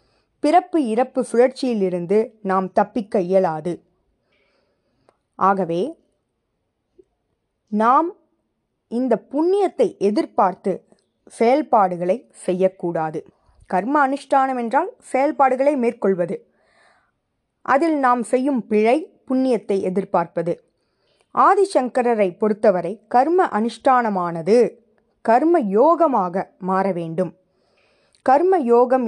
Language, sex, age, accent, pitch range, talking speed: Tamil, female, 20-39, native, 190-265 Hz, 70 wpm